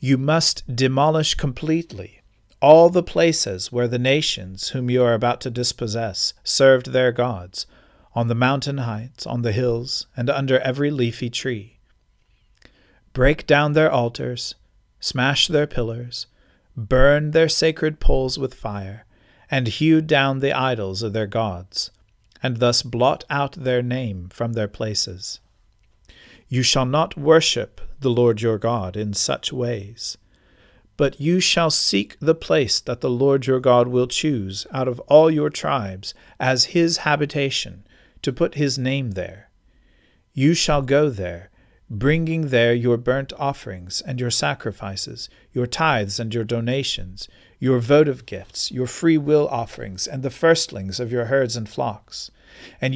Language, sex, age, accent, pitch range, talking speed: English, male, 40-59, American, 105-140 Hz, 145 wpm